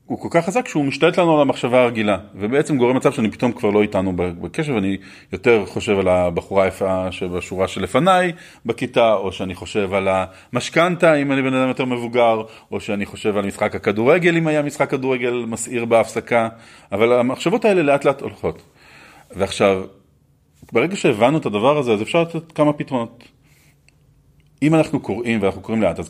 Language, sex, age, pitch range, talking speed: Hebrew, male, 30-49, 100-125 Hz, 175 wpm